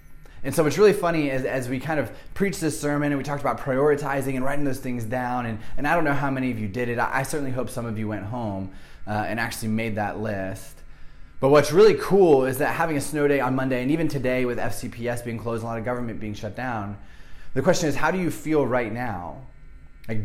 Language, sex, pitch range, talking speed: English, male, 105-130 Hz, 245 wpm